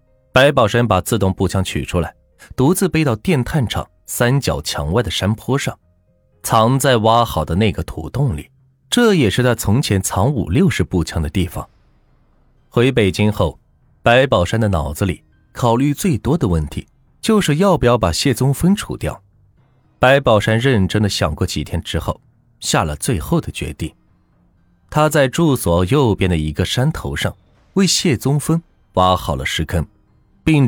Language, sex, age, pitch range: Chinese, male, 20-39, 90-130 Hz